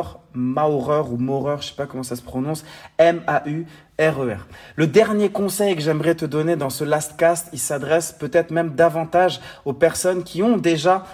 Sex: male